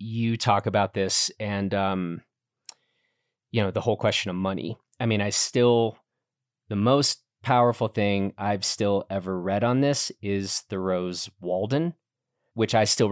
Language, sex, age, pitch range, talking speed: English, male, 30-49, 100-130 Hz, 150 wpm